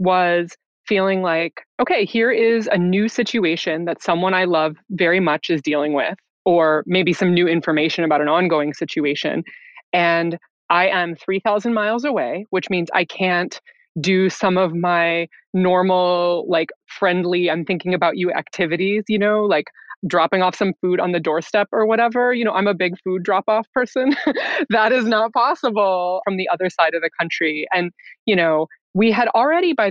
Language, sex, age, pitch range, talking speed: English, female, 20-39, 175-220 Hz, 175 wpm